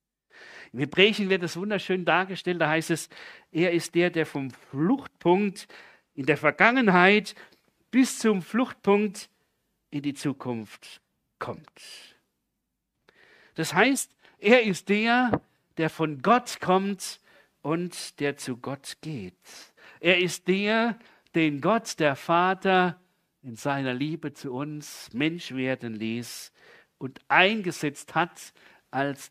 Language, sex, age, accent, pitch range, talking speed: German, male, 60-79, German, 125-180 Hz, 120 wpm